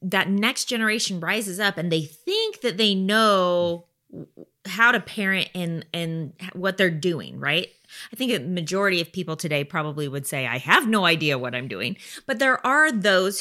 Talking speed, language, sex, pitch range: 185 wpm, English, female, 170-225 Hz